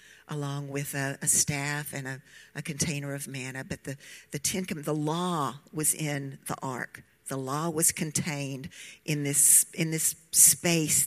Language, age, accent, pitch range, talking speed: English, 50-69, American, 140-170 Hz, 165 wpm